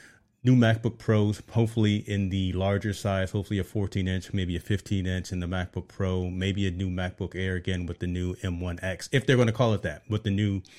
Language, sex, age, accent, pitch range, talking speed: English, male, 30-49, American, 90-110 Hz, 210 wpm